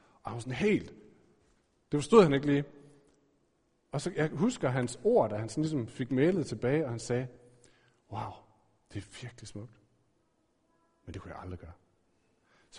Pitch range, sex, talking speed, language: 115-160 Hz, male, 180 wpm, Danish